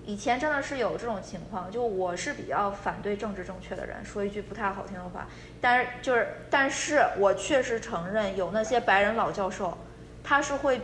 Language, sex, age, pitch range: Chinese, female, 20-39, 190-240 Hz